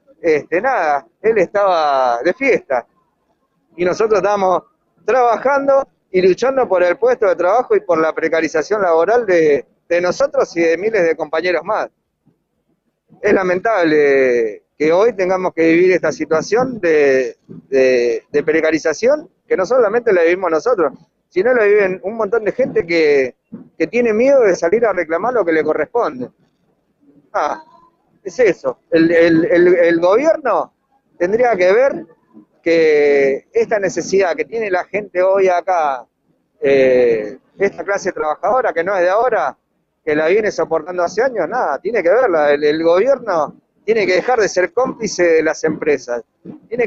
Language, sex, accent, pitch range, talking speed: Spanish, male, Argentinian, 165-270 Hz, 150 wpm